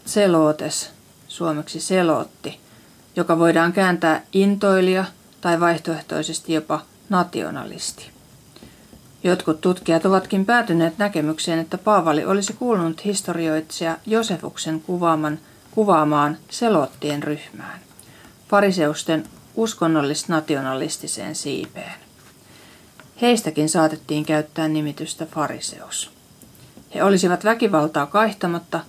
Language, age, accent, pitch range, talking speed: Finnish, 40-59, native, 155-195 Hz, 75 wpm